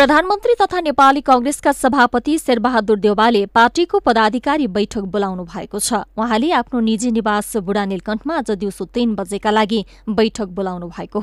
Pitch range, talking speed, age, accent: 205-250 Hz, 165 wpm, 20-39, Indian